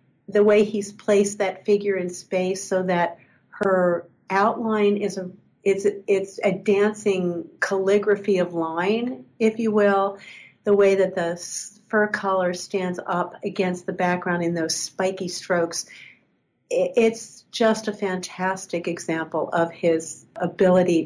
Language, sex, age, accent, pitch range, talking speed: English, female, 50-69, American, 175-205 Hz, 135 wpm